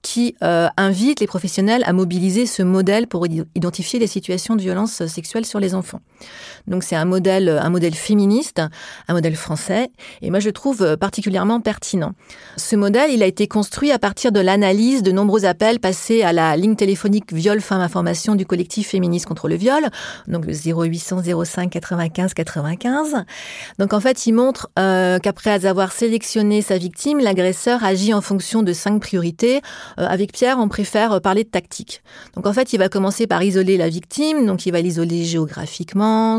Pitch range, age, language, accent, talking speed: 180-225 Hz, 30-49, French, French, 180 wpm